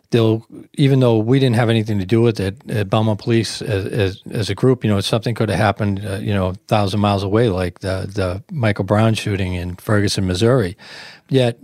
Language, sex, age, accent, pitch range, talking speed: English, male, 40-59, American, 105-125 Hz, 210 wpm